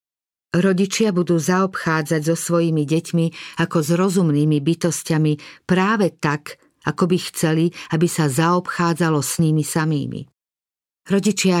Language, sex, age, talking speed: Slovak, female, 50-69, 115 wpm